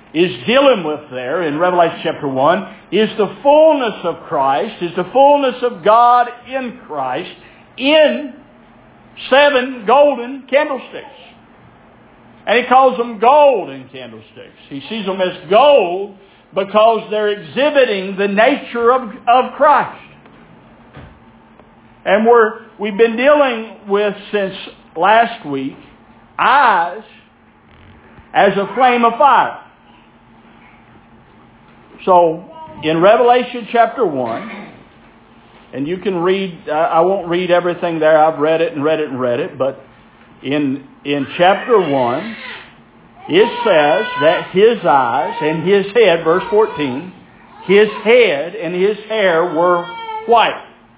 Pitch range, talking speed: 170-245 Hz, 120 wpm